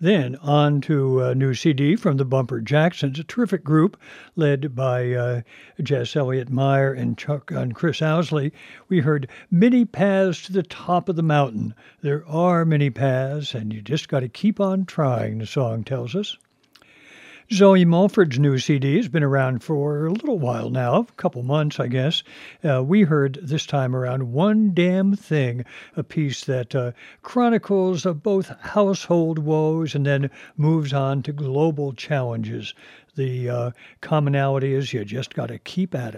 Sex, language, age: male, English, 60-79